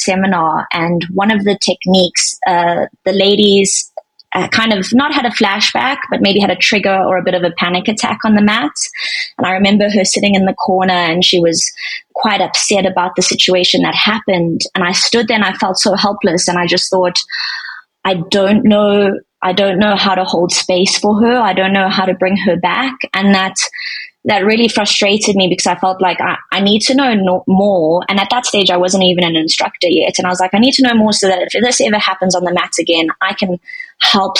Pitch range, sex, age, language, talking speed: 180-210 Hz, female, 20-39, English, 230 wpm